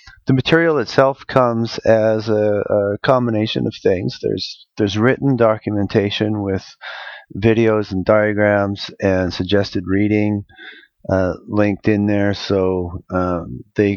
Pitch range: 105-120 Hz